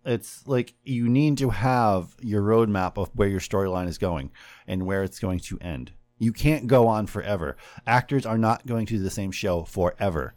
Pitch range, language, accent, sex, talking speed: 90-120 Hz, English, American, male, 195 wpm